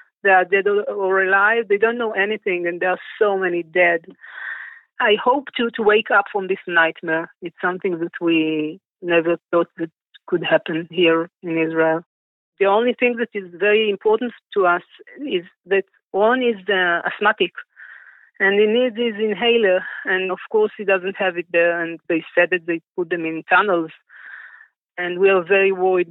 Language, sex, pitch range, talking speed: English, female, 175-215 Hz, 180 wpm